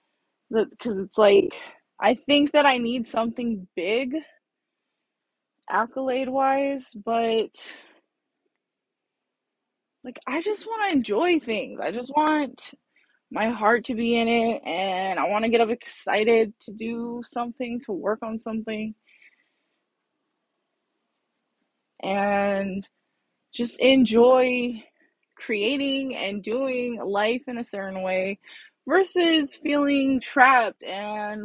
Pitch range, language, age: 210-270 Hz, English, 20-39